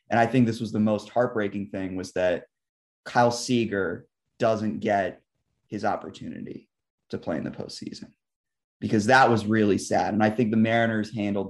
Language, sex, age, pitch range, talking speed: English, male, 20-39, 105-120 Hz, 170 wpm